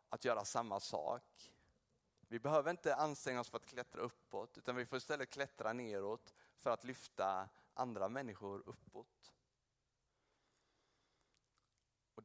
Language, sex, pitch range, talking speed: Swedish, male, 105-125 Hz, 125 wpm